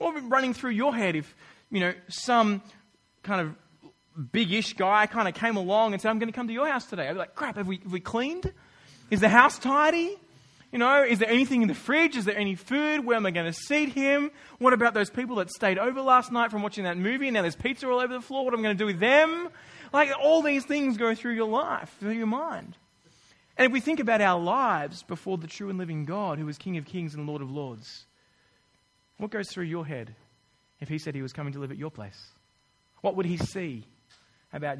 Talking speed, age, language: 245 wpm, 20-39, English